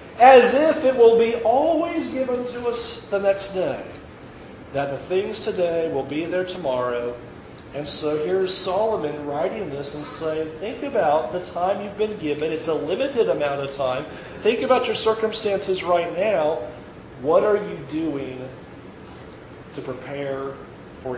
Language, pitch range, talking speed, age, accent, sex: English, 150-235 Hz, 155 wpm, 40-59, American, male